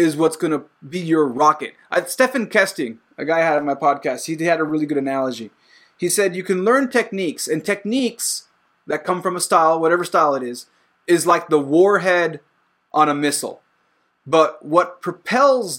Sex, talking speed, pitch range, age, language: male, 185 wpm, 155-205 Hz, 20-39, English